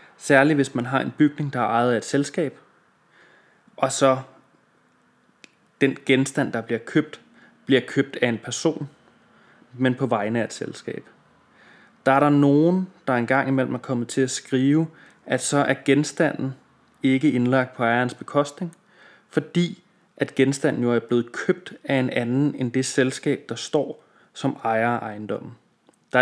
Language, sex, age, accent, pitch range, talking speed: Danish, male, 20-39, native, 120-140 Hz, 160 wpm